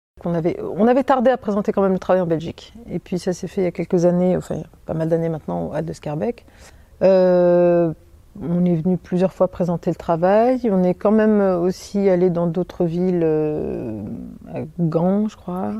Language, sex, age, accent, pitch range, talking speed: French, female, 40-59, French, 170-205 Hz, 210 wpm